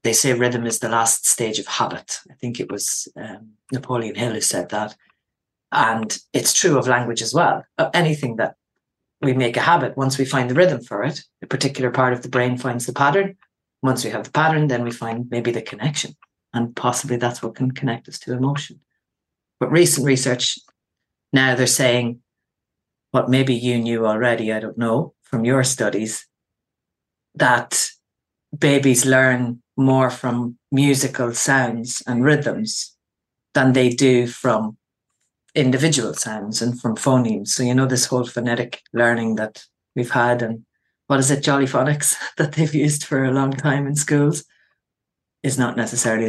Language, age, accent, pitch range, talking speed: English, 40-59, Irish, 120-135 Hz, 170 wpm